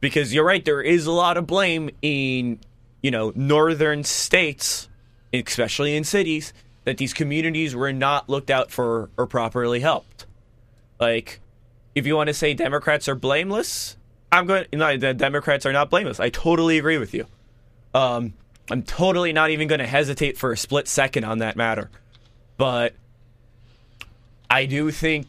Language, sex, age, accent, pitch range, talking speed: English, male, 20-39, American, 115-145 Hz, 165 wpm